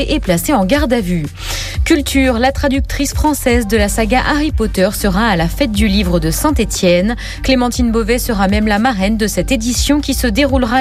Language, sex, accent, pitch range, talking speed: French, female, French, 200-265 Hz, 195 wpm